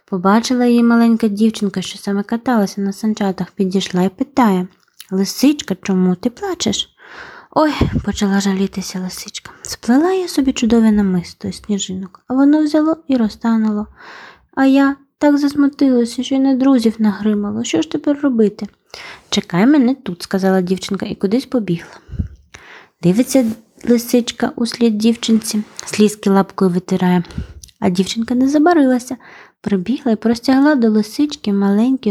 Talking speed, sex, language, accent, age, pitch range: 135 wpm, female, Ukrainian, native, 20-39, 205-275 Hz